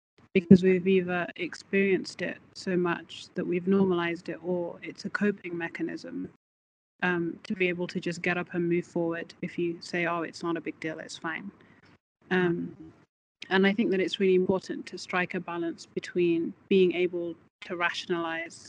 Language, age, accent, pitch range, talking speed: English, 30-49, British, 170-190 Hz, 175 wpm